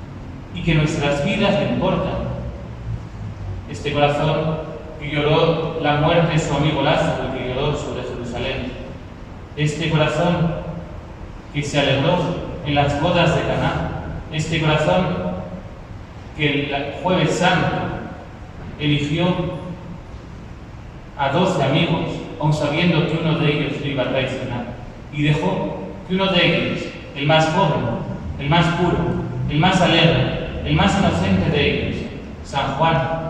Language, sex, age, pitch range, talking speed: English, male, 40-59, 135-165 Hz, 130 wpm